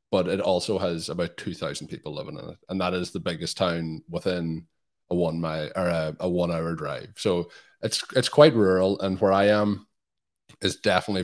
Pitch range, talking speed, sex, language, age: 85-105 Hz, 200 wpm, male, English, 20-39